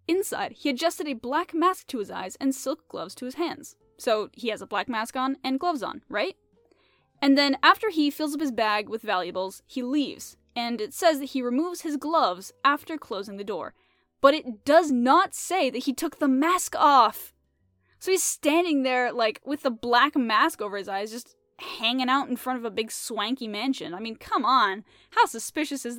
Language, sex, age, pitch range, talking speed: English, female, 10-29, 220-300 Hz, 210 wpm